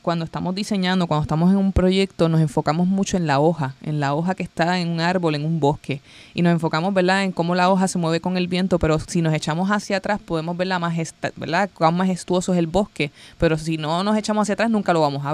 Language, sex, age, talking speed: Spanish, female, 20-39, 255 wpm